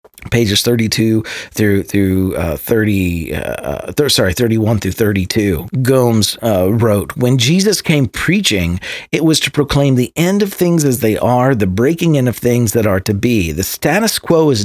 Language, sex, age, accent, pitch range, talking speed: English, male, 40-59, American, 105-145 Hz, 175 wpm